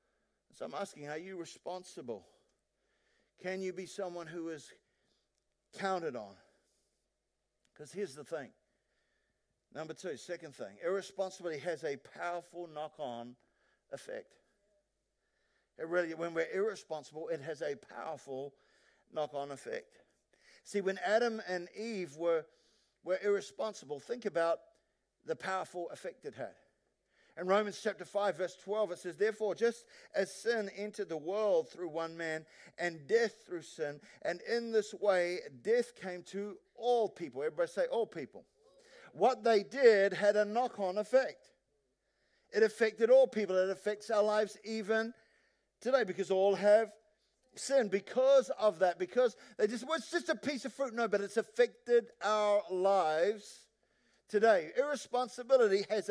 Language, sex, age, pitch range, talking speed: English, male, 50-69, 175-235 Hz, 140 wpm